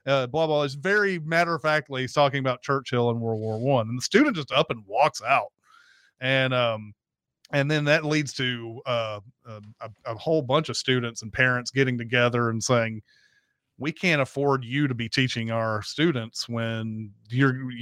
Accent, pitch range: American, 115-170 Hz